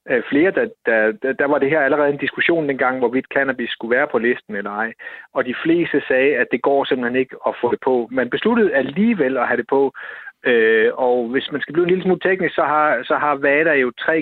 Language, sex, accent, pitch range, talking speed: Danish, male, native, 120-160 Hz, 240 wpm